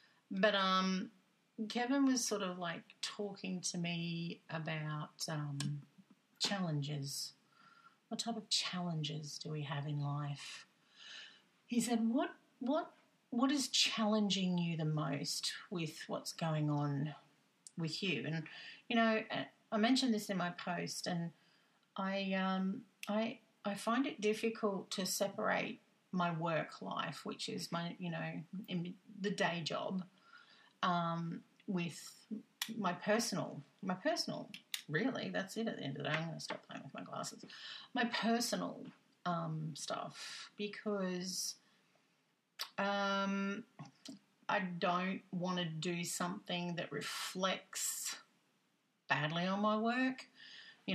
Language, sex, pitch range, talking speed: English, female, 165-220 Hz, 130 wpm